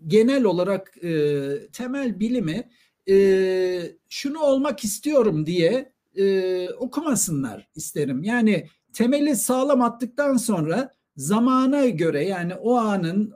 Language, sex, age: Turkish, male, 60-79